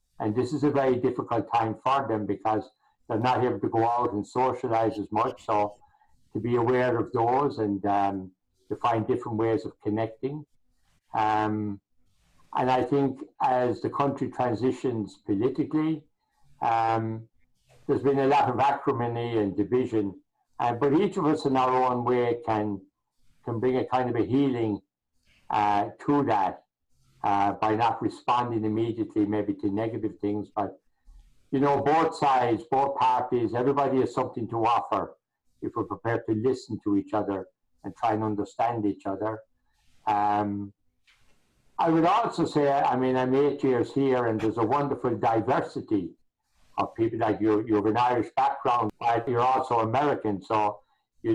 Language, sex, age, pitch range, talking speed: English, male, 60-79, 105-130 Hz, 160 wpm